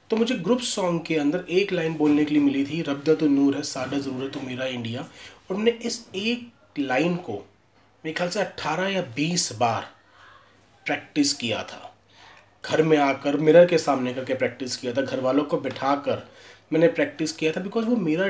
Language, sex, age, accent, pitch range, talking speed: Hindi, male, 30-49, native, 135-180 Hz, 200 wpm